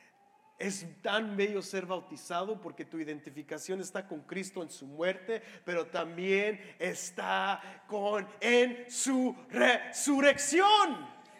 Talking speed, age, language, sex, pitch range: 105 wpm, 40-59, English, male, 235-335 Hz